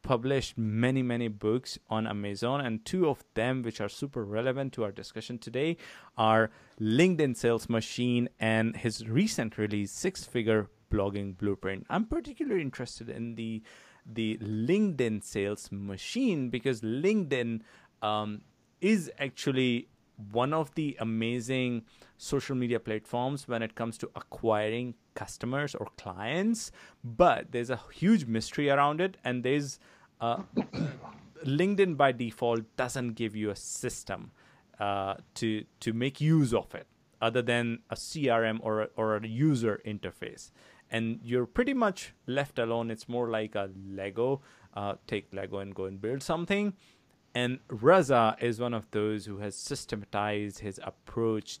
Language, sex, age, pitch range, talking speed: English, male, 30-49, 110-135 Hz, 145 wpm